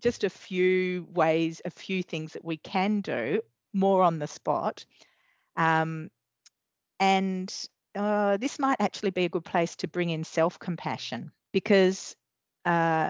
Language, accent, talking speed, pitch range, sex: English, Australian, 140 wpm, 150-180 Hz, female